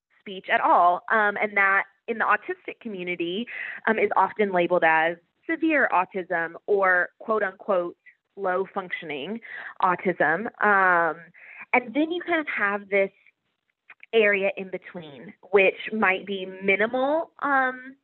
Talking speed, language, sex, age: 130 wpm, English, female, 20-39